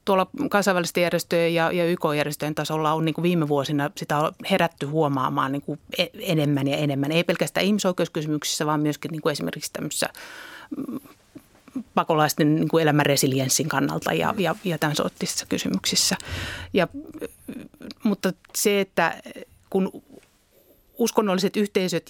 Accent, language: native, Finnish